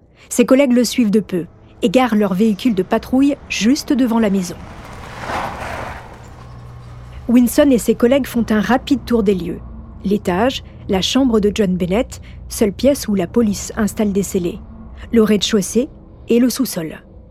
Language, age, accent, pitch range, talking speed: French, 40-59, French, 195-245 Hz, 155 wpm